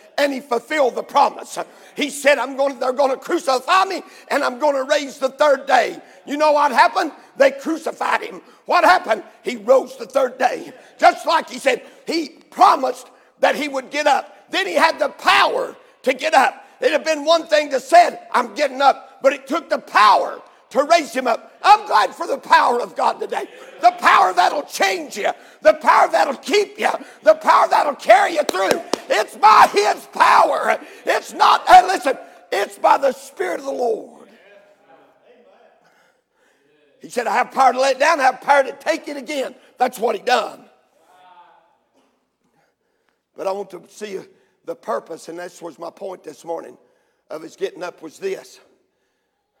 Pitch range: 255-375 Hz